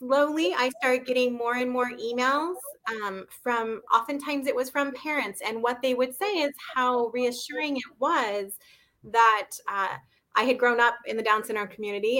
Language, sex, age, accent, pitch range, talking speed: English, female, 20-39, American, 205-255 Hz, 175 wpm